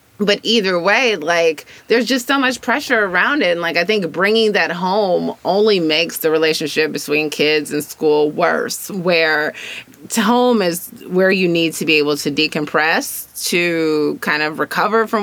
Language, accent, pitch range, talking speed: English, American, 150-185 Hz, 170 wpm